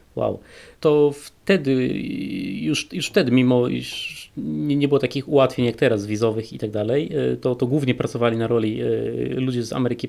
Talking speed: 165 wpm